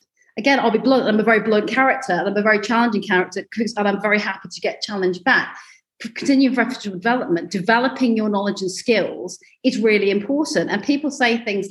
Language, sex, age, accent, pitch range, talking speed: English, female, 40-59, British, 200-255 Hz, 195 wpm